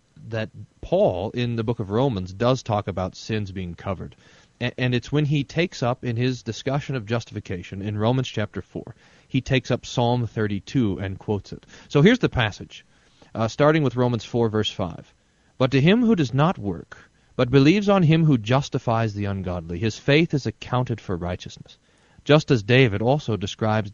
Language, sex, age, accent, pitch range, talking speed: English, male, 40-59, American, 105-135 Hz, 185 wpm